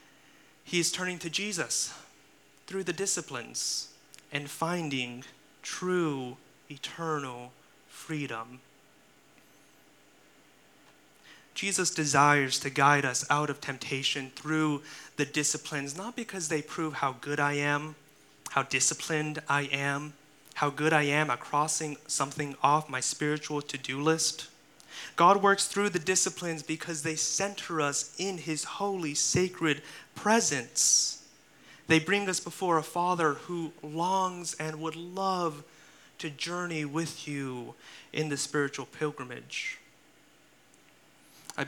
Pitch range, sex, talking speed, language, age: 140-165 Hz, male, 120 wpm, English, 30-49